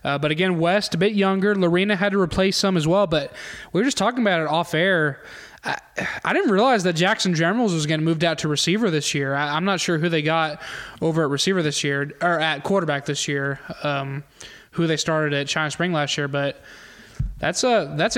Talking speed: 220 wpm